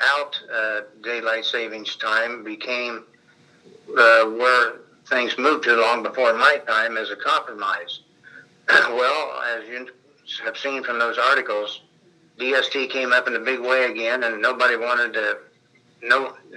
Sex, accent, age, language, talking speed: male, American, 60-79, English, 140 wpm